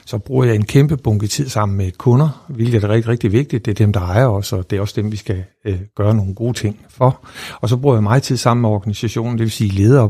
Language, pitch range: Danish, 105-125 Hz